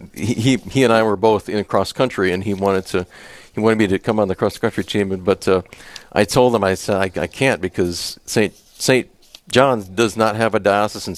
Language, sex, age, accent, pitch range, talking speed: English, male, 50-69, American, 100-130 Hz, 225 wpm